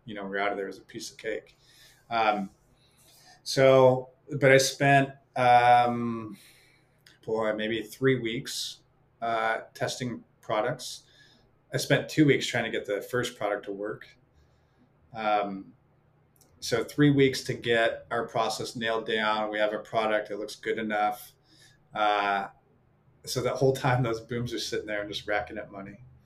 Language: English